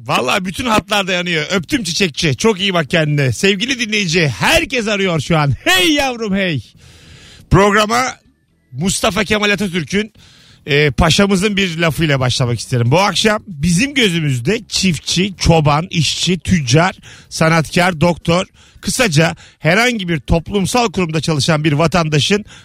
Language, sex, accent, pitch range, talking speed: Turkish, male, native, 145-205 Hz, 125 wpm